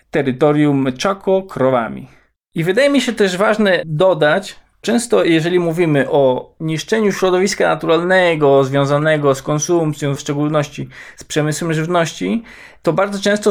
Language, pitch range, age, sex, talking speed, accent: Polish, 145-205 Hz, 20-39, male, 125 wpm, native